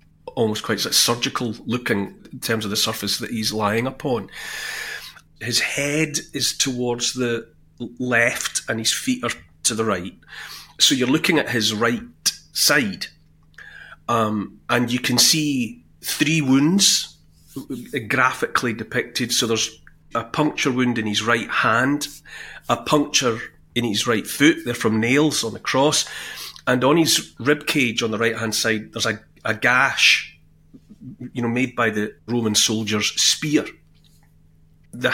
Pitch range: 110-135 Hz